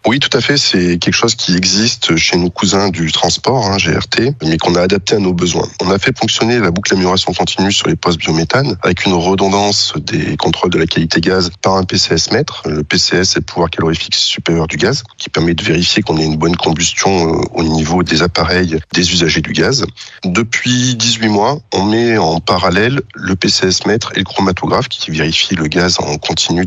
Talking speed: 205 wpm